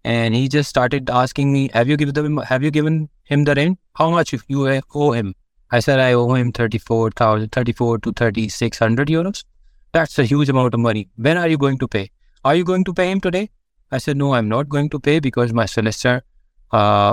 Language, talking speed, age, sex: English, 220 wpm, 20-39, male